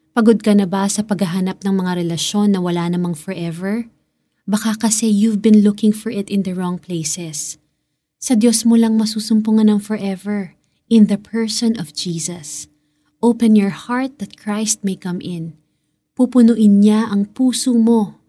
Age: 20-39